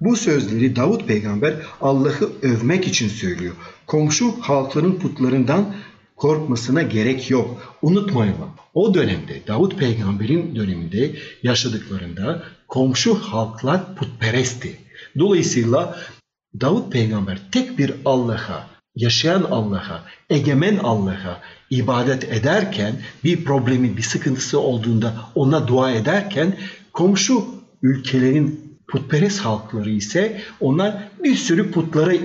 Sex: male